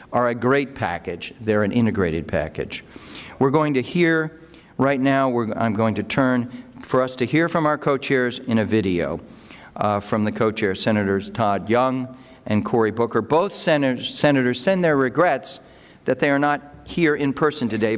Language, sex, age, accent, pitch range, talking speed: English, male, 50-69, American, 120-150 Hz, 175 wpm